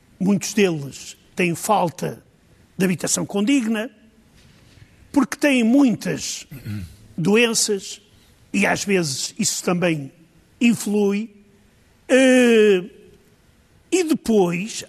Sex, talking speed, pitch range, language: male, 75 wpm, 175-235 Hz, Portuguese